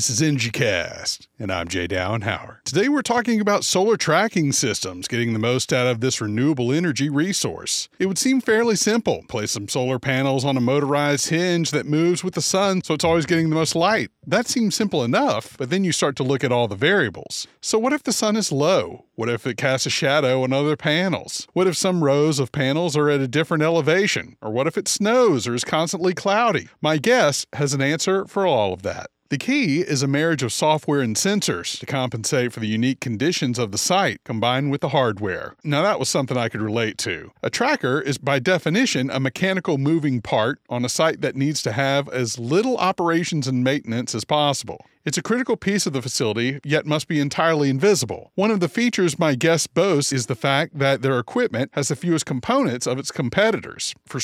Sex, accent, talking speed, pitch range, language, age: male, American, 215 wpm, 125-170 Hz, English, 40-59